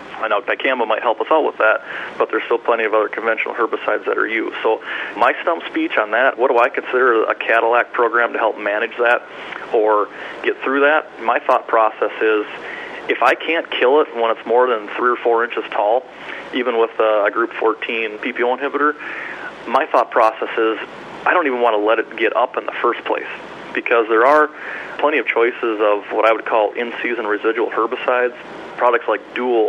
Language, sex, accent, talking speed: English, male, American, 200 wpm